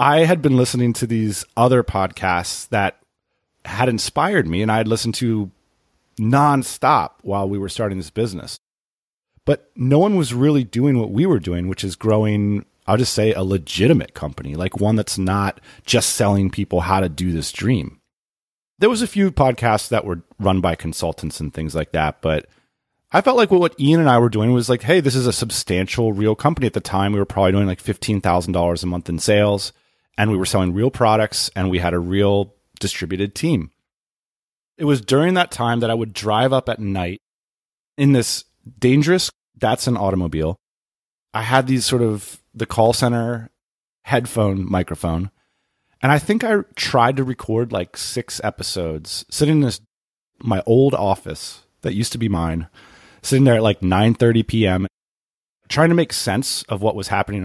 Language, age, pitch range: English, 30-49, 95-125 Hz